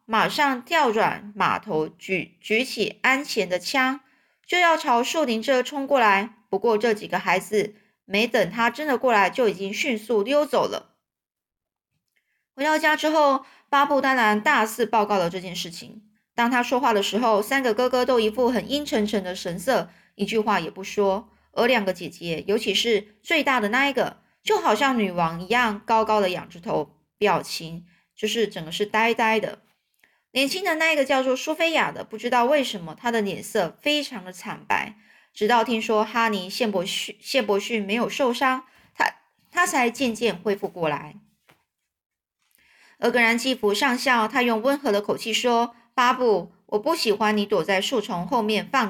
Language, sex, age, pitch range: Chinese, female, 20-39, 205-255 Hz